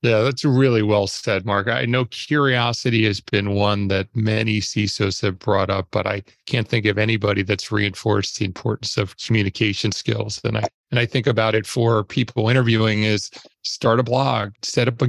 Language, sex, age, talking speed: English, male, 40-59, 185 wpm